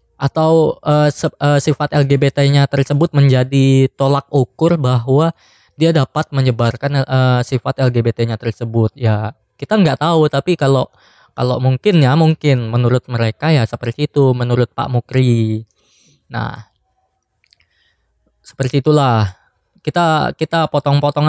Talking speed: 120 wpm